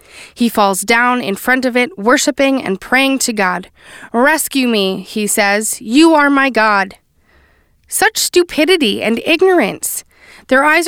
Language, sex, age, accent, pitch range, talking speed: English, female, 20-39, American, 215-285 Hz, 145 wpm